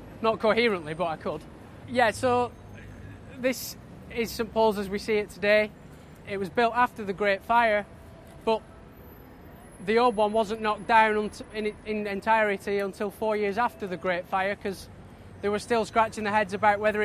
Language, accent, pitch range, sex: English, British, 195-230 Hz, male